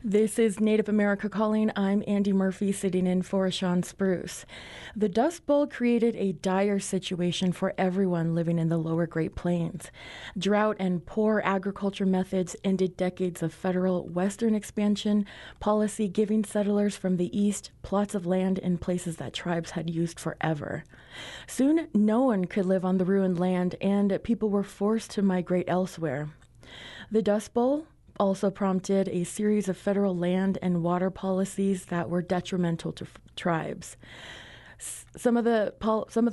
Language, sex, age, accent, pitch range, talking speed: English, female, 20-39, American, 185-225 Hz, 160 wpm